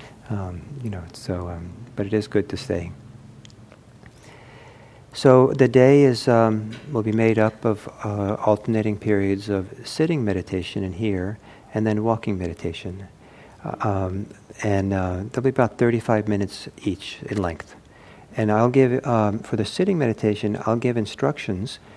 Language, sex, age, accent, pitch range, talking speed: English, male, 50-69, American, 100-115 Hz, 155 wpm